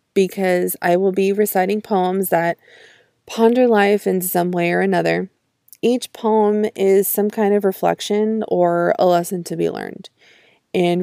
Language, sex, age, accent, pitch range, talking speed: English, female, 20-39, American, 180-215 Hz, 150 wpm